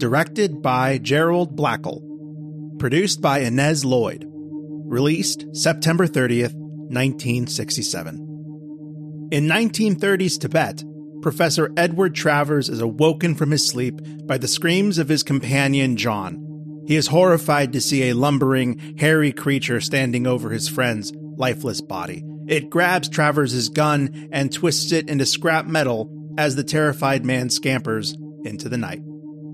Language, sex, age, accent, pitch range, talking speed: English, male, 30-49, American, 140-160 Hz, 130 wpm